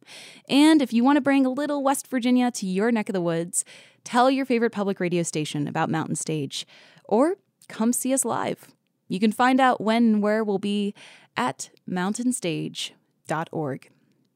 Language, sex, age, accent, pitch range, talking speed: English, female, 20-39, American, 160-215 Hz, 170 wpm